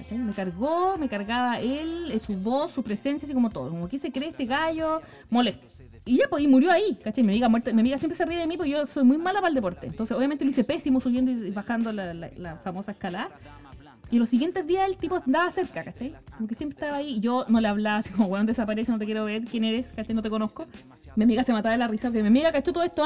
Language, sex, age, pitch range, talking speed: English, female, 20-39, 225-280 Hz, 270 wpm